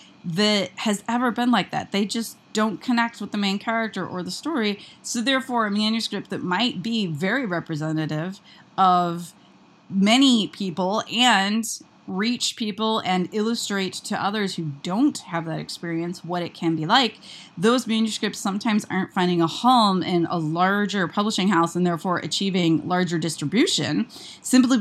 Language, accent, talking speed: English, American, 155 wpm